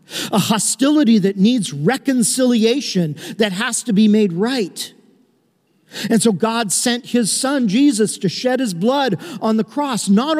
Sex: male